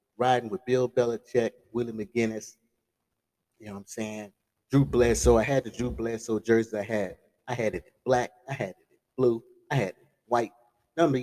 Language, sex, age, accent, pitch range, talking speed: English, male, 30-49, American, 105-140 Hz, 200 wpm